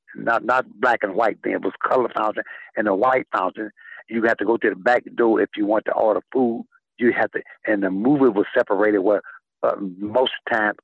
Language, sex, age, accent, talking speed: English, male, 60-79, American, 220 wpm